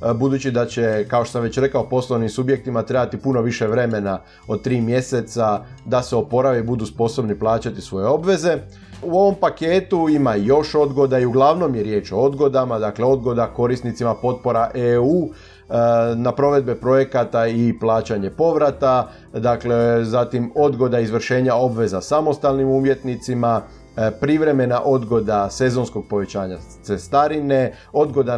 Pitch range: 115-140 Hz